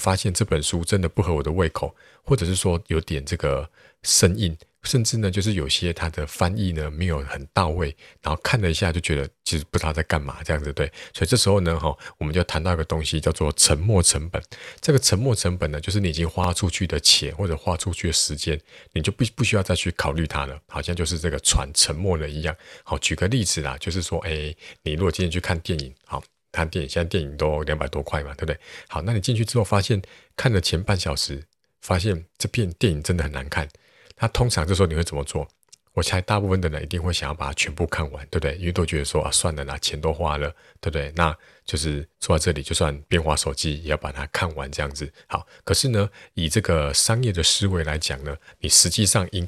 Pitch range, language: 75-95 Hz, Chinese